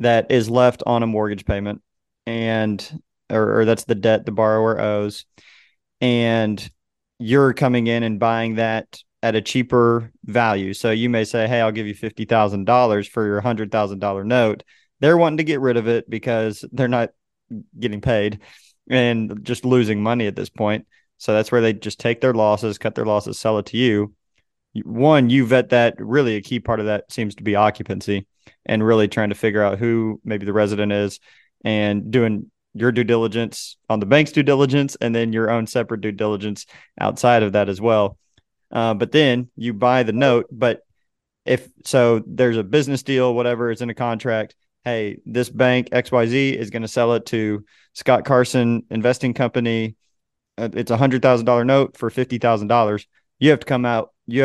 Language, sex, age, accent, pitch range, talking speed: English, male, 30-49, American, 105-125 Hz, 185 wpm